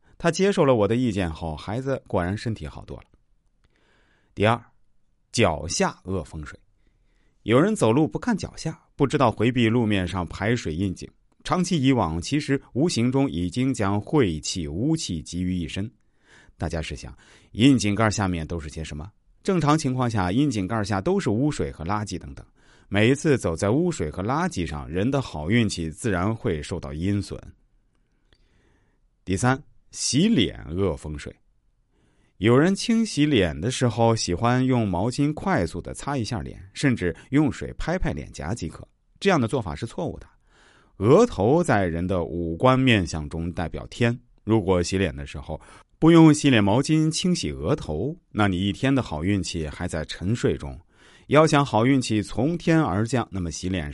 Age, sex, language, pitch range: 30-49, male, Chinese, 85-130 Hz